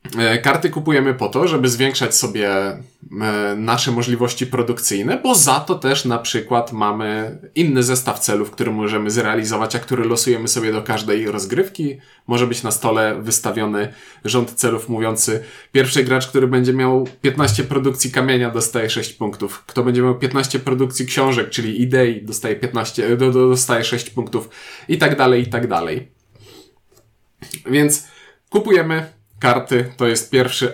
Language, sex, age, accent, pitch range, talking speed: Polish, male, 20-39, native, 115-135 Hz, 140 wpm